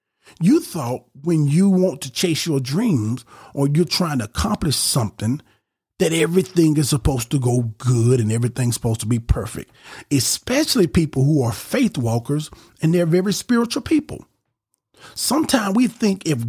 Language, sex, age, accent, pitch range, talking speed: English, male, 40-59, American, 120-195 Hz, 155 wpm